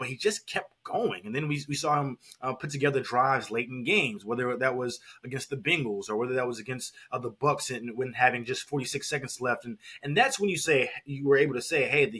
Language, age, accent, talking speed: English, 20-39, American, 265 wpm